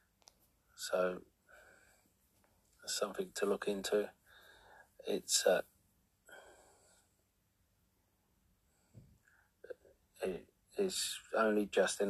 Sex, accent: male, British